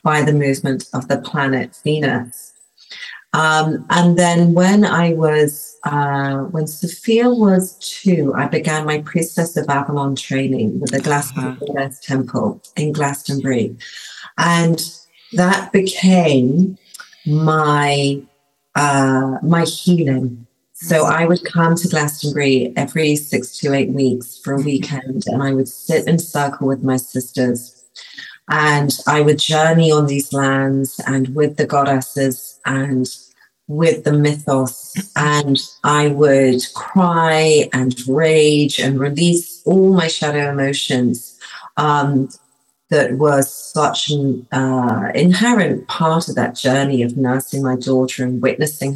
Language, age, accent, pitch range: English, 40-59, British, 135-165 Hz